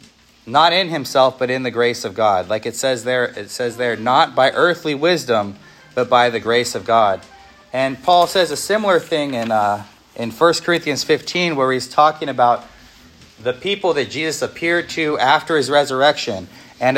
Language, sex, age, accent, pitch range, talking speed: English, male, 30-49, American, 120-155 Hz, 185 wpm